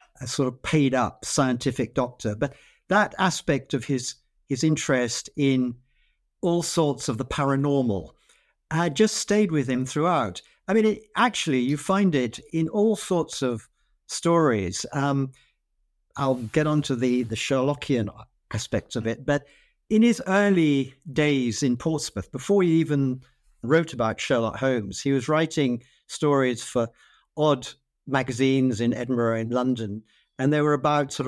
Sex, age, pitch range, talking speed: male, 60-79, 125-160 Hz, 150 wpm